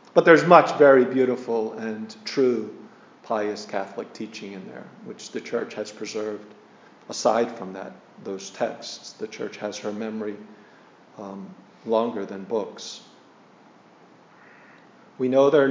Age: 40-59